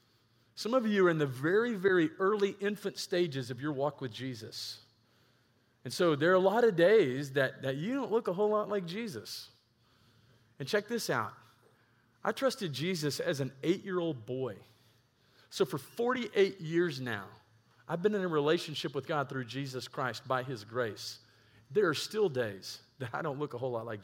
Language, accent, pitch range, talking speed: English, American, 120-175 Hz, 185 wpm